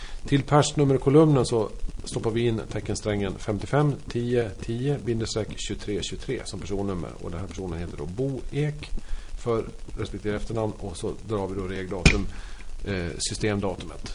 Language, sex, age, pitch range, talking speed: Swedish, male, 40-59, 95-130 Hz, 135 wpm